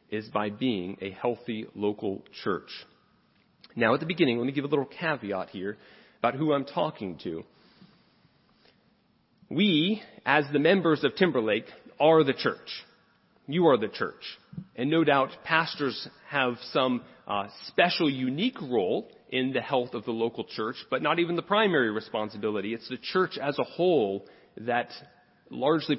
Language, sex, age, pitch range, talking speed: English, male, 40-59, 115-155 Hz, 155 wpm